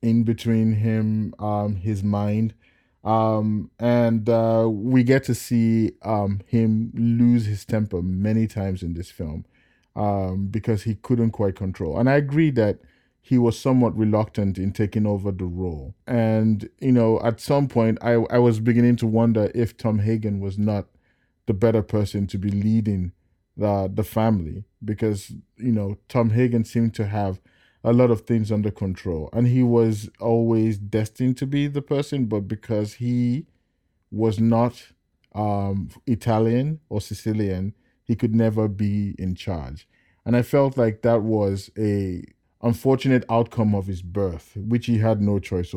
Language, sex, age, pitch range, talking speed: English, male, 20-39, 100-115 Hz, 160 wpm